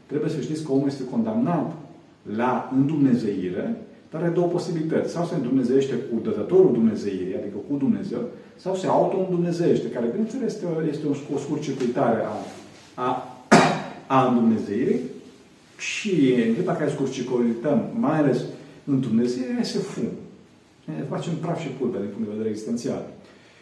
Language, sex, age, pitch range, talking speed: Romanian, male, 40-59, 125-175 Hz, 135 wpm